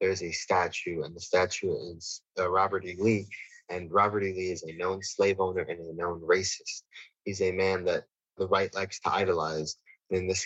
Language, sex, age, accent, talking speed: English, male, 30-49, American, 205 wpm